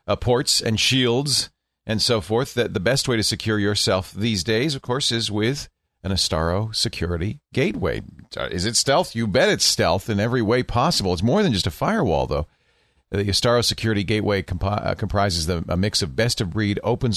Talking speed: 190 wpm